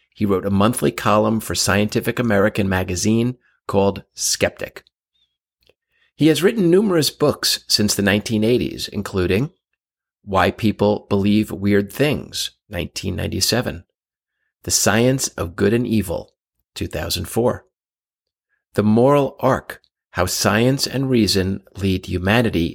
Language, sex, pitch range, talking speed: English, male, 95-120 Hz, 110 wpm